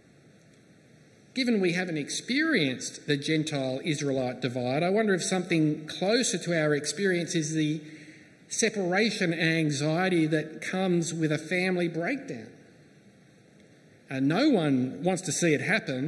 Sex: male